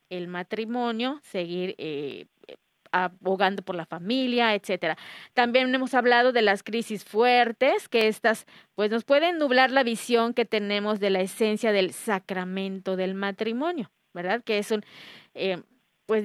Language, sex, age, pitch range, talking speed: Spanish, female, 30-49, 200-250 Hz, 145 wpm